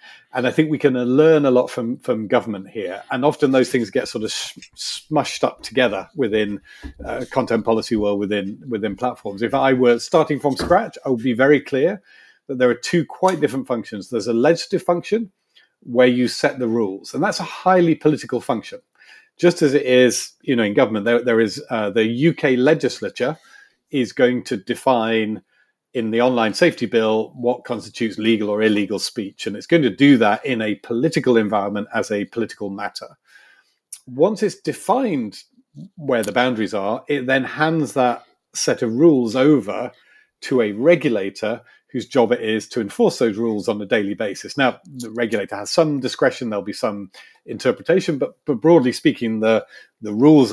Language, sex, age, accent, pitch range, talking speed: English, male, 40-59, British, 110-145 Hz, 185 wpm